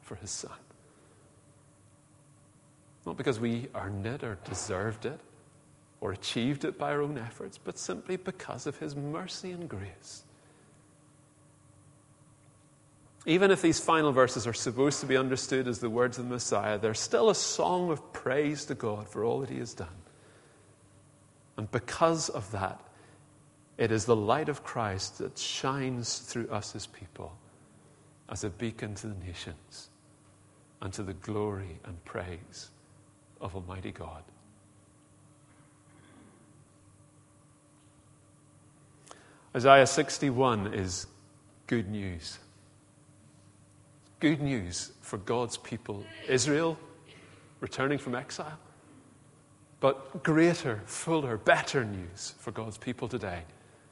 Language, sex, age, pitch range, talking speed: English, male, 40-59, 105-145 Hz, 120 wpm